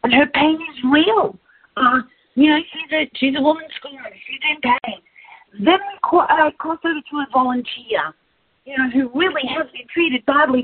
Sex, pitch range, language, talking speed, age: female, 245-330 Hz, English, 185 wpm, 40-59